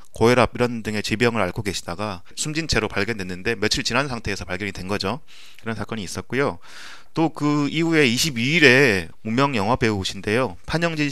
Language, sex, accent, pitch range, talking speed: English, male, Korean, 100-125 Hz, 135 wpm